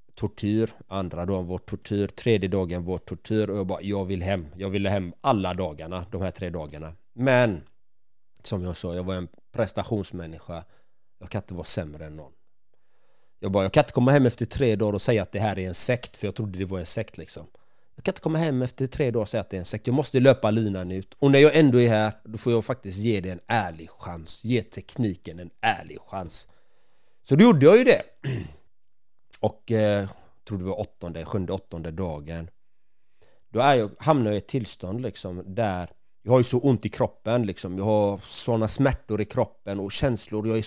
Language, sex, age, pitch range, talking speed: Swedish, male, 30-49, 95-125 Hz, 220 wpm